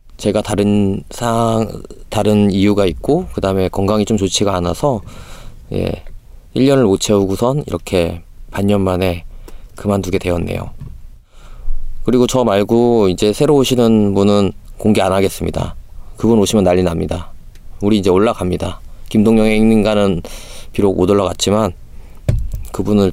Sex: male